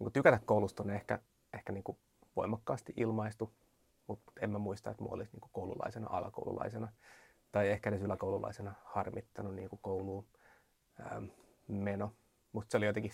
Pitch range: 100-110 Hz